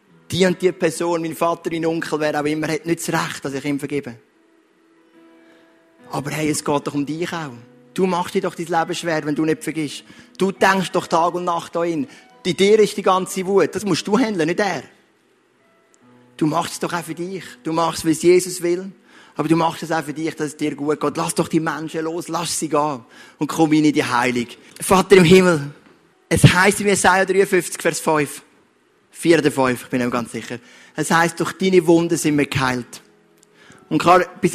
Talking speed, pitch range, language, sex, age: 210 wpm, 155-185 Hz, German, male, 30-49